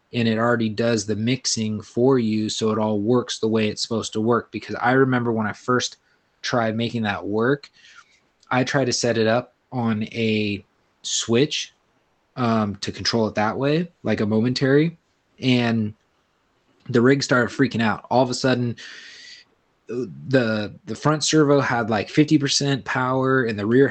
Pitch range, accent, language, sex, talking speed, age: 110-130 Hz, American, English, male, 170 wpm, 20-39